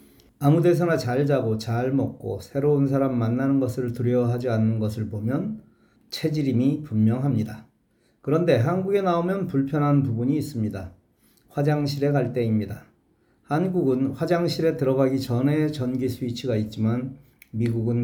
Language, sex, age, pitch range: Korean, male, 40-59, 115-140 Hz